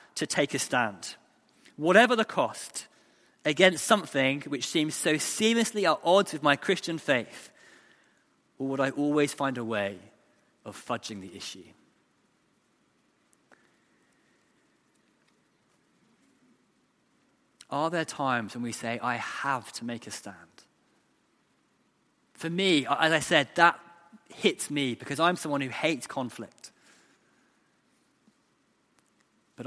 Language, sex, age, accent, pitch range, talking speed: English, male, 20-39, British, 135-170 Hz, 115 wpm